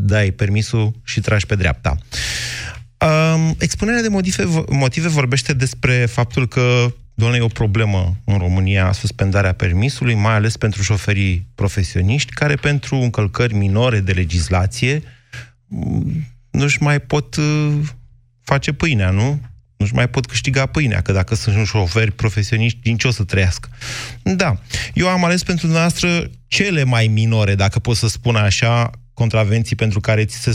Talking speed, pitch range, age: 145 wpm, 105-135 Hz, 30-49